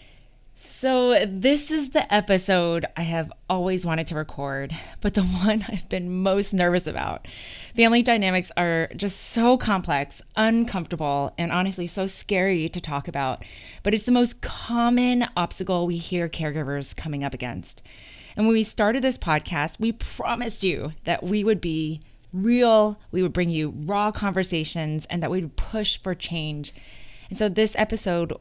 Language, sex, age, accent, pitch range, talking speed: English, female, 20-39, American, 155-200 Hz, 160 wpm